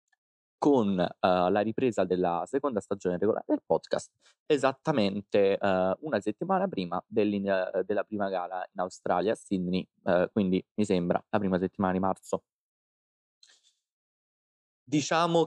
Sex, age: male, 20-39